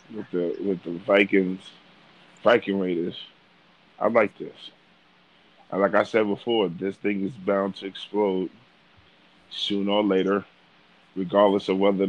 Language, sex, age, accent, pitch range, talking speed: English, male, 20-39, American, 95-105 Hz, 135 wpm